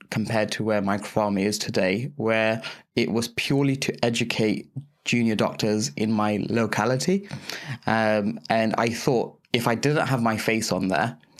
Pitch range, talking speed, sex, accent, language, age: 105-125 Hz, 155 wpm, male, British, English, 20-39